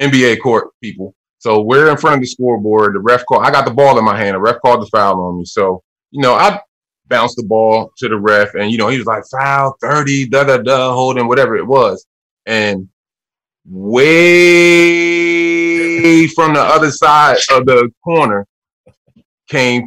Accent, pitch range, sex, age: American, 120-170 Hz, male, 30-49